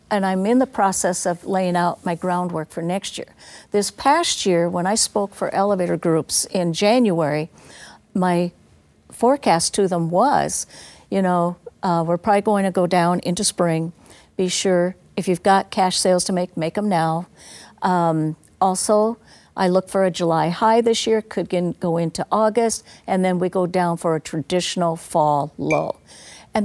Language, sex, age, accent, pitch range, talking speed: English, female, 50-69, American, 170-210 Hz, 175 wpm